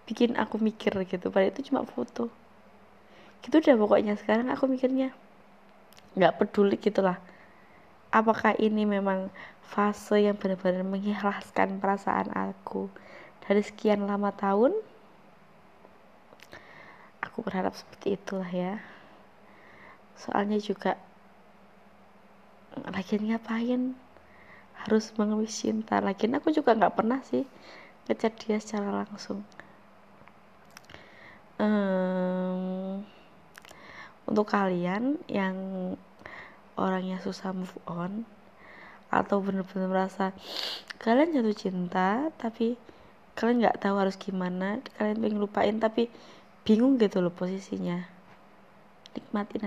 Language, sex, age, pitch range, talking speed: Indonesian, female, 20-39, 190-225 Hz, 100 wpm